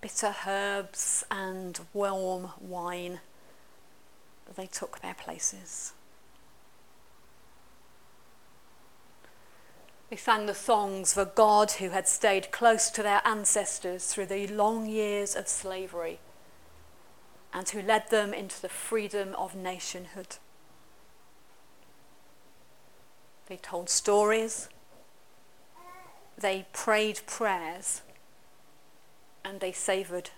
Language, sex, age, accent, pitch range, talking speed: English, female, 40-59, British, 185-220 Hz, 90 wpm